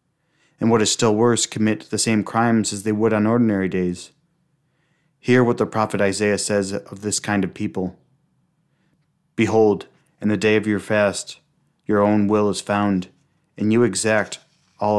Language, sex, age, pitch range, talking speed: English, male, 30-49, 100-115 Hz, 170 wpm